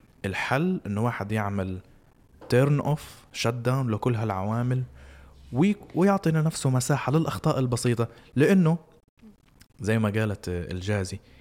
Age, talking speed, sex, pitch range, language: 20-39, 110 wpm, male, 110-135 Hz, Arabic